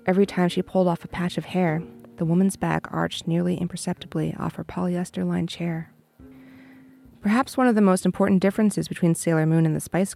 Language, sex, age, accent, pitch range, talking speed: English, female, 30-49, American, 155-185 Hz, 190 wpm